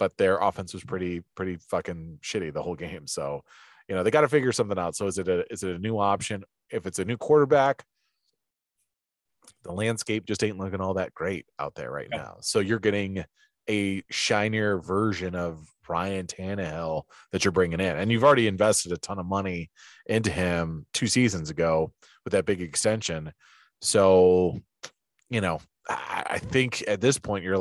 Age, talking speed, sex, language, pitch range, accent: 30-49, 185 wpm, male, English, 85-100 Hz, American